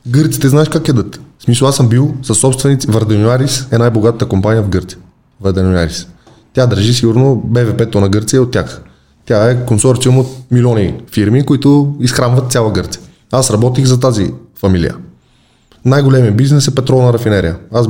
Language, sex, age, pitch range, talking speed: Bulgarian, male, 20-39, 110-130 Hz, 165 wpm